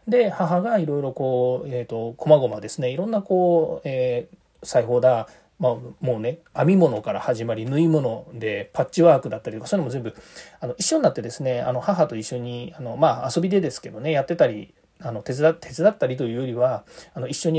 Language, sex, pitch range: Japanese, male, 120-170 Hz